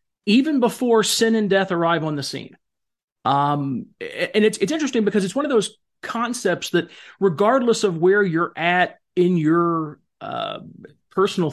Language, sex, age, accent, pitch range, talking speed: English, male, 40-59, American, 160-215 Hz, 155 wpm